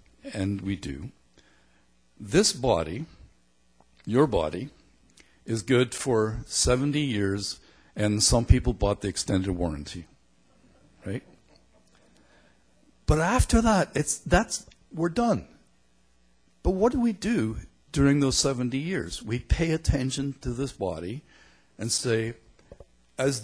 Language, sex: English, male